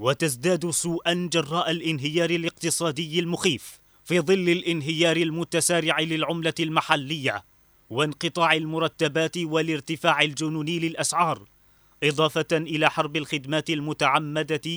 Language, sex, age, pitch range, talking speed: Arabic, male, 30-49, 150-170 Hz, 90 wpm